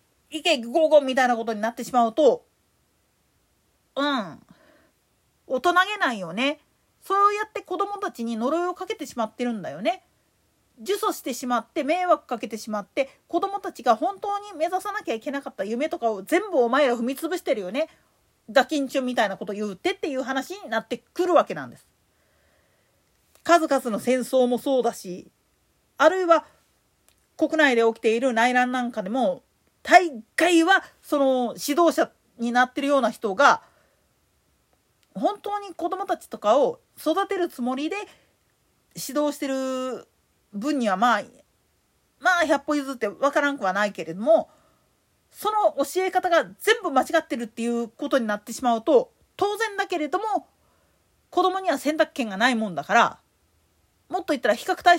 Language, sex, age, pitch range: Japanese, female, 40-59, 240-350 Hz